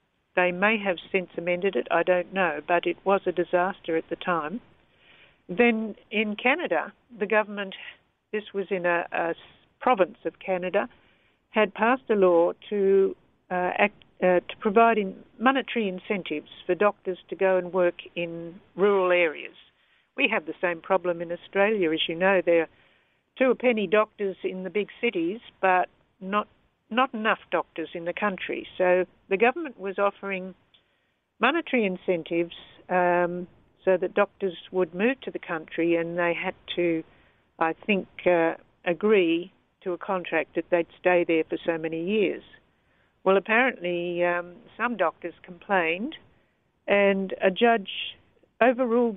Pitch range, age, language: 175-210 Hz, 60-79, English